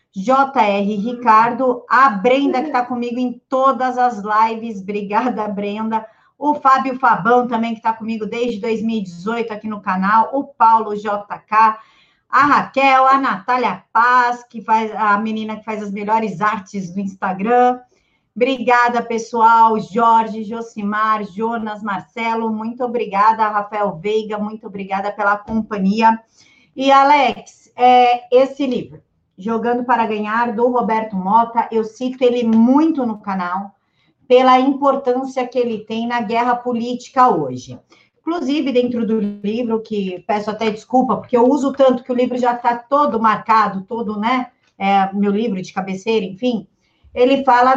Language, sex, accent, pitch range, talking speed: Portuguese, female, Brazilian, 215-250 Hz, 145 wpm